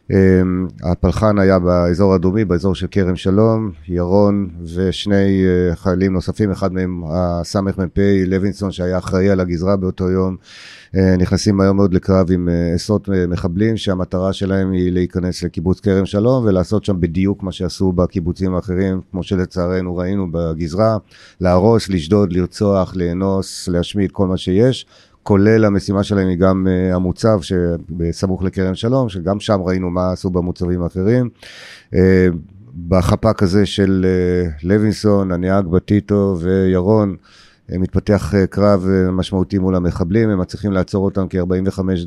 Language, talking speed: Hebrew, 135 wpm